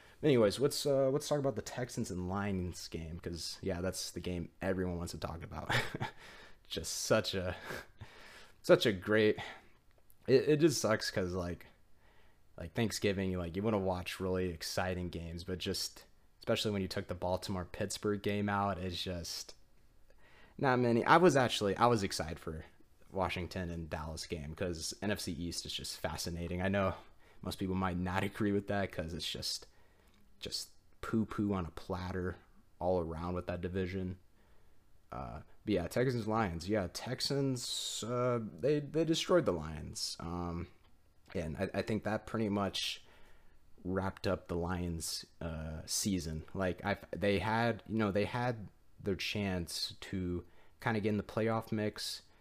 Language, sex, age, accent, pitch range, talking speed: English, male, 20-39, American, 90-105 Hz, 165 wpm